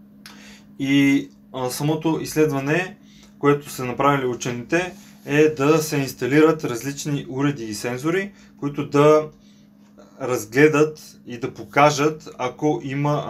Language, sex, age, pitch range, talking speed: Bulgarian, male, 20-39, 125-155 Hz, 105 wpm